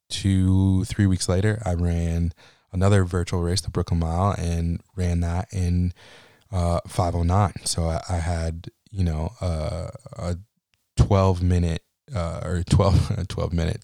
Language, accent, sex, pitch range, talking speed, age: English, American, male, 85-105 Hz, 145 wpm, 20-39